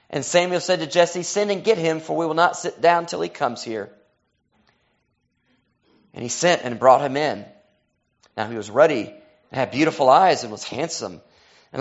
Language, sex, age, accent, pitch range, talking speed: English, male, 30-49, American, 145-190 Hz, 195 wpm